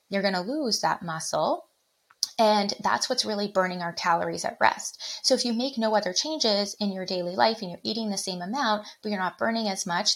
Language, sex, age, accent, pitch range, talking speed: English, female, 20-39, American, 175-230 Hz, 225 wpm